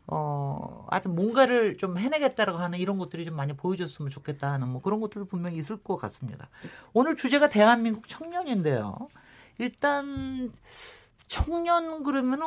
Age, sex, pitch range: 40-59, male, 150-230 Hz